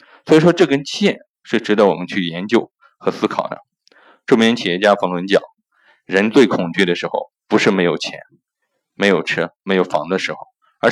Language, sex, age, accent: Chinese, male, 20-39, native